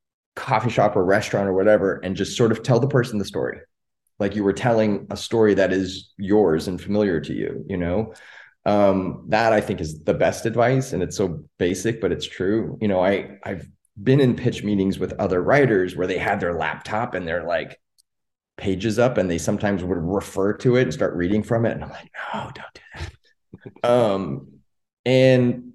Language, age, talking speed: English, 30-49, 205 wpm